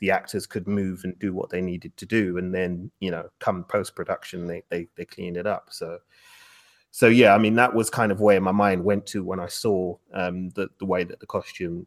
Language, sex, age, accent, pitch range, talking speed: English, male, 30-49, British, 100-130 Hz, 240 wpm